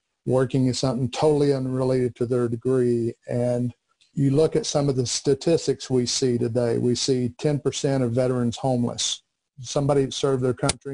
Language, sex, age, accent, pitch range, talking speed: English, male, 50-69, American, 125-140 Hz, 165 wpm